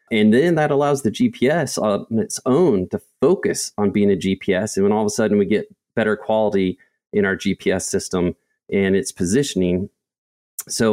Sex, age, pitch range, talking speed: male, 30-49, 95-120 Hz, 180 wpm